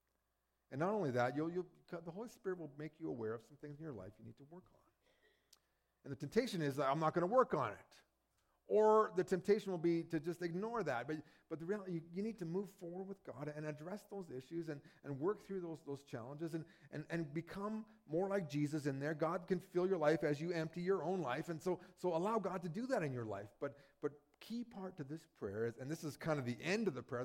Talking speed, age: 255 wpm, 40-59